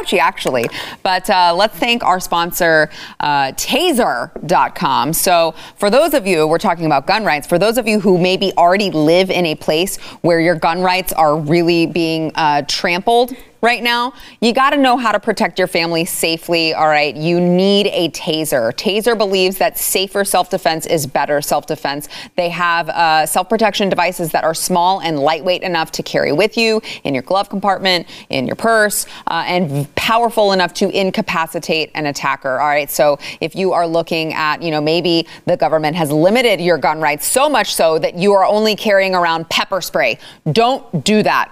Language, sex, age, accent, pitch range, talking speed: English, female, 30-49, American, 160-200 Hz, 185 wpm